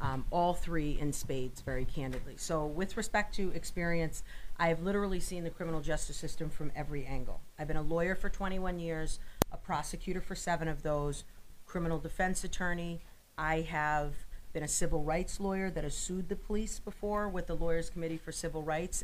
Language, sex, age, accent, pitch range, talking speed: English, female, 40-59, American, 155-185 Hz, 185 wpm